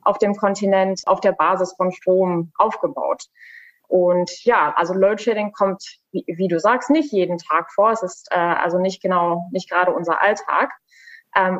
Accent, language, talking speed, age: German, German, 170 wpm, 20-39